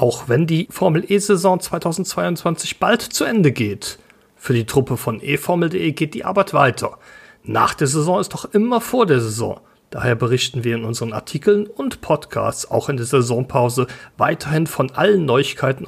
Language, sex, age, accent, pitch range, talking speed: German, male, 40-59, German, 120-185 Hz, 165 wpm